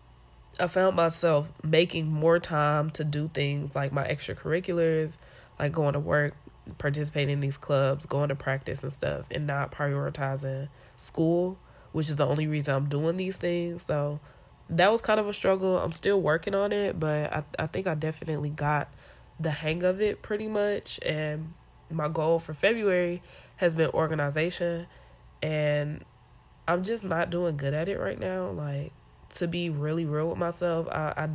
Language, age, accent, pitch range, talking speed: English, 20-39, American, 145-175 Hz, 175 wpm